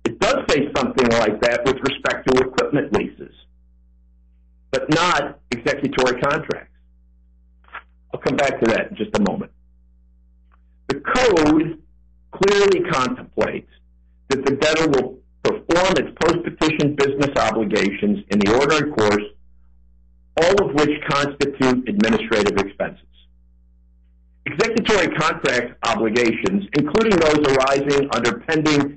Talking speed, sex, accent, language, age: 115 wpm, male, American, English, 50-69